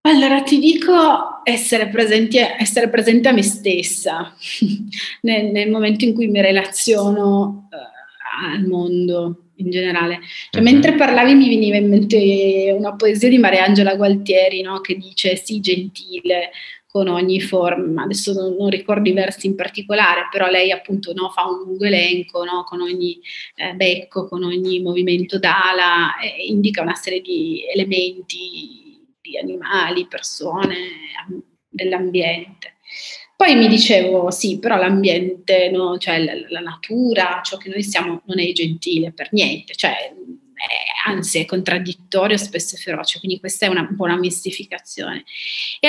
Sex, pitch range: female, 185-230 Hz